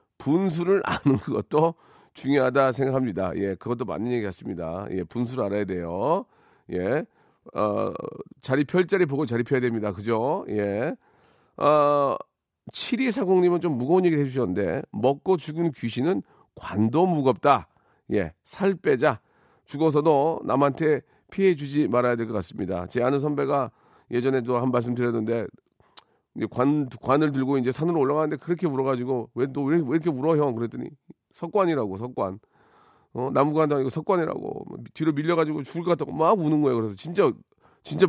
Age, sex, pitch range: 40-59, male, 125-170 Hz